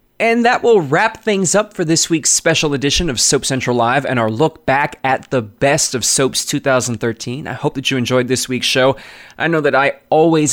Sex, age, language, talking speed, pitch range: male, 20-39, English, 215 wpm, 125-160 Hz